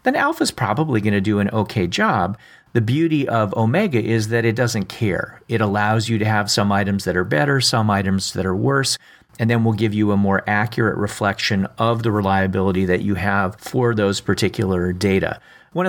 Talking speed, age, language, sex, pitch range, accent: 205 wpm, 40-59, English, male, 100-120 Hz, American